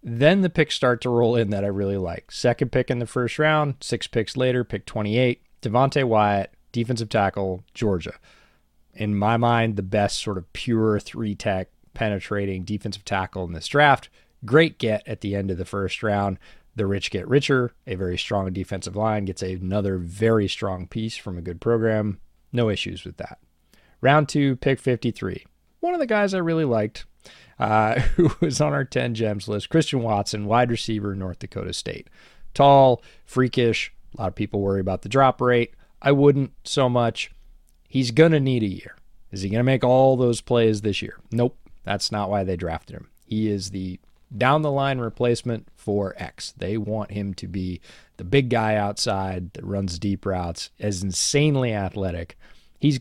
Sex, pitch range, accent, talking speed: male, 100-125 Hz, American, 180 wpm